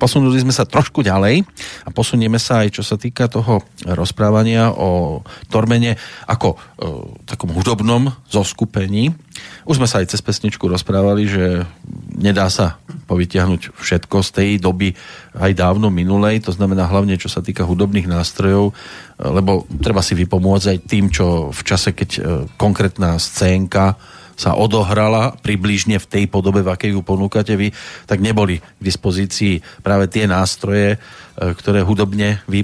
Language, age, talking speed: Slovak, 40-59, 145 wpm